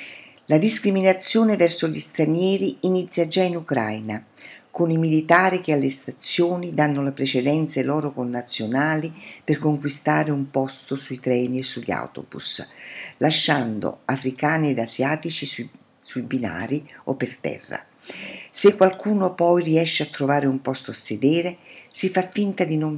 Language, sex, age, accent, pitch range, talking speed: Italian, female, 50-69, native, 130-165 Hz, 145 wpm